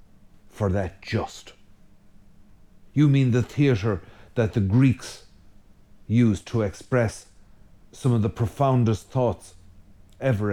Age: 50-69